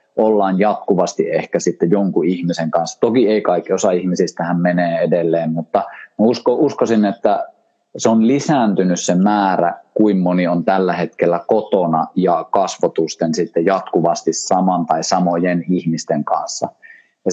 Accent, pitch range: native, 85-110 Hz